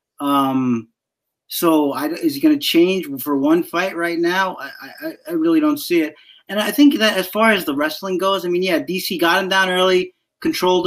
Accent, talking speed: American, 215 wpm